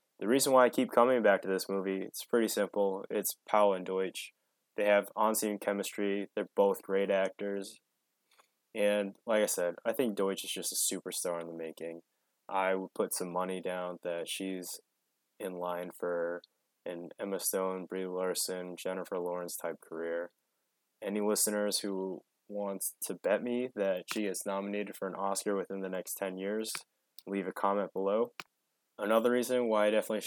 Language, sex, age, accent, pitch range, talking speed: English, male, 20-39, American, 95-110 Hz, 170 wpm